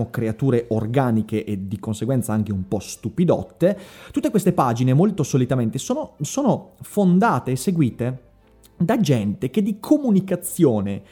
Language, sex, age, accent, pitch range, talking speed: Italian, male, 30-49, native, 120-180 Hz, 130 wpm